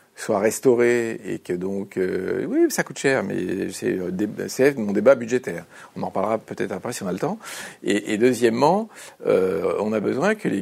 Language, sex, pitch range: French, male, 100-170 Hz